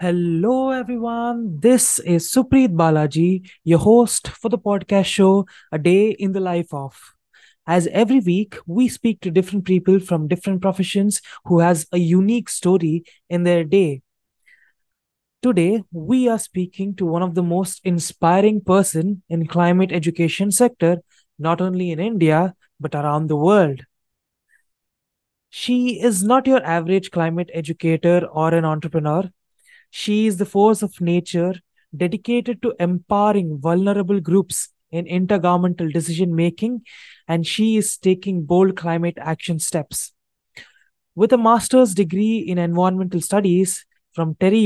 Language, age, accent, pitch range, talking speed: English, 20-39, Indian, 170-205 Hz, 135 wpm